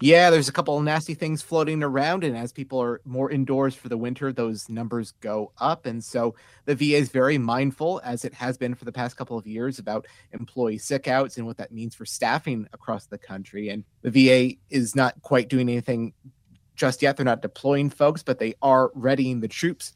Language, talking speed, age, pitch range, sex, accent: English, 215 wpm, 30-49, 115-135 Hz, male, American